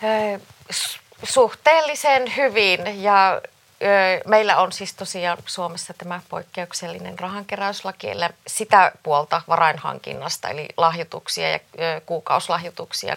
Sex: female